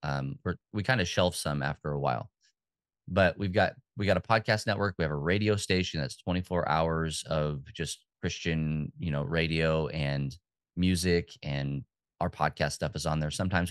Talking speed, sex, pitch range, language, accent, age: 185 wpm, male, 75-95 Hz, English, American, 30-49